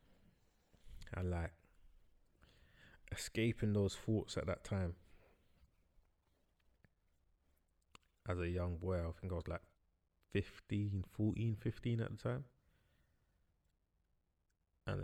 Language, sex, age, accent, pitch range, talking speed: English, male, 20-39, British, 85-100 Hz, 95 wpm